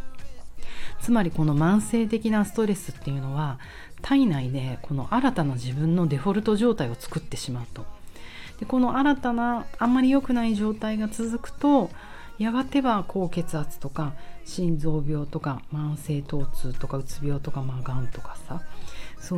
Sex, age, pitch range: female, 40-59, 140-220 Hz